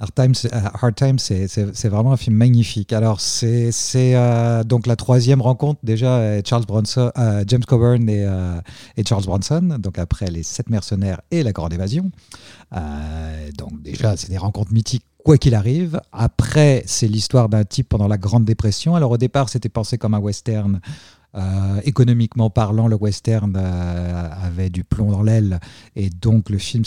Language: French